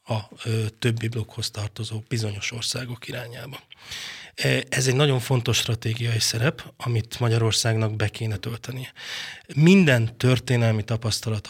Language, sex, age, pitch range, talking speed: Hungarian, male, 20-39, 115-135 Hz, 115 wpm